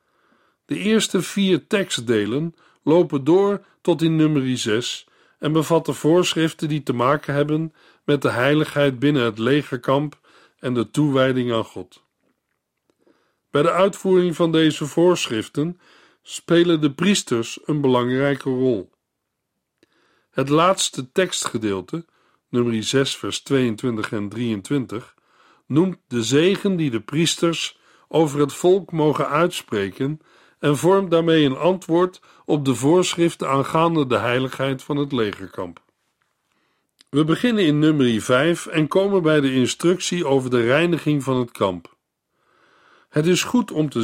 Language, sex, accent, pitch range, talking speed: Dutch, male, Dutch, 125-170 Hz, 130 wpm